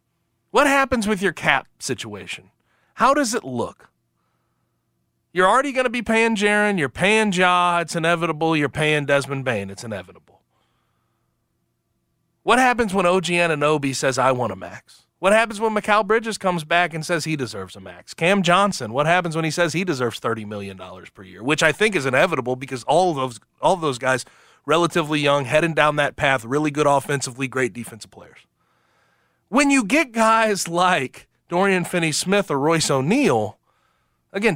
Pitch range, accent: 130-200 Hz, American